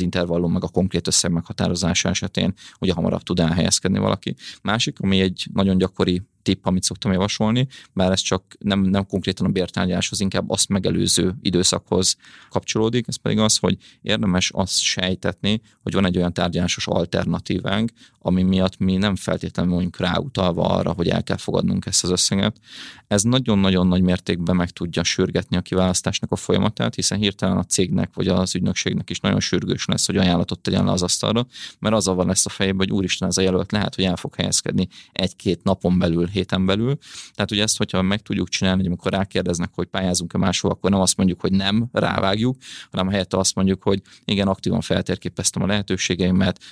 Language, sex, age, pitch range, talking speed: Hungarian, male, 30-49, 90-100 Hz, 180 wpm